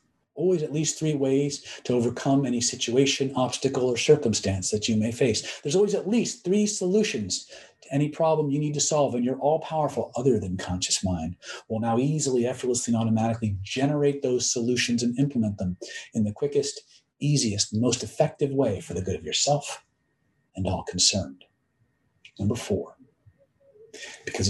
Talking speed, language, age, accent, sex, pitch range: 165 wpm, English, 50-69, American, male, 120-165 Hz